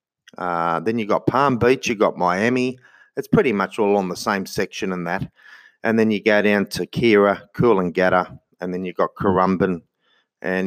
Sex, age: male, 30-49